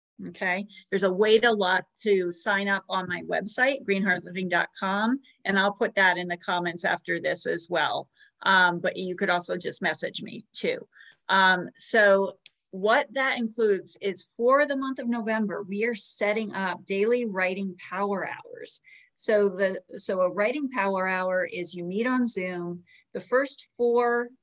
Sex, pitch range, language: female, 190-225 Hz, English